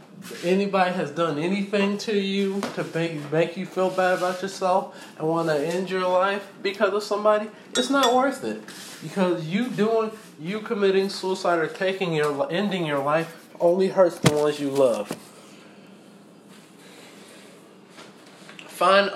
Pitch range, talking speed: 165-200 Hz, 145 wpm